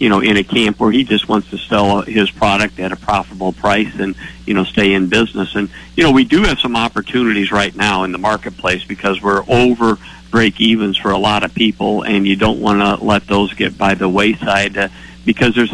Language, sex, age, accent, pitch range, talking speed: English, male, 50-69, American, 100-110 Hz, 225 wpm